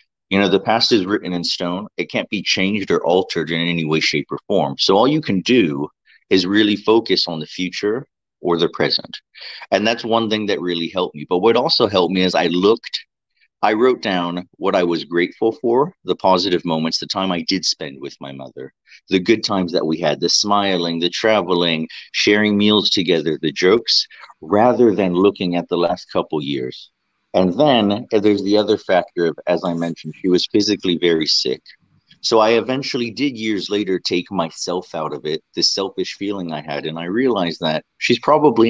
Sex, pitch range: male, 85-110 Hz